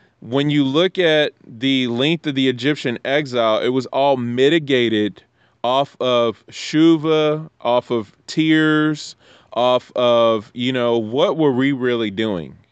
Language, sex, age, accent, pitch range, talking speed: English, male, 20-39, American, 115-135 Hz, 135 wpm